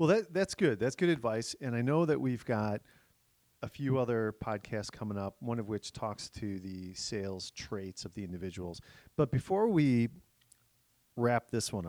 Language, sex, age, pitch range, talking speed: English, male, 40-59, 95-130 Hz, 180 wpm